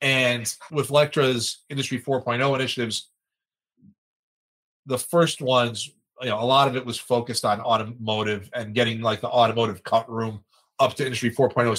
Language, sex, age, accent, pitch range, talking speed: English, male, 30-49, American, 110-130 Hz, 155 wpm